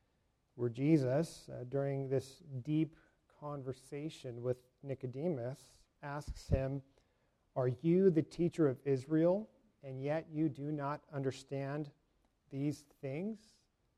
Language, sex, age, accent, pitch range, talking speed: English, male, 40-59, American, 135-170 Hz, 105 wpm